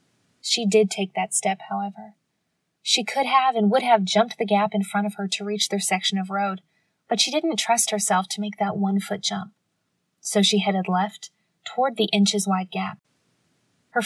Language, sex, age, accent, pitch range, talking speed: English, female, 20-39, American, 190-215 Hz, 190 wpm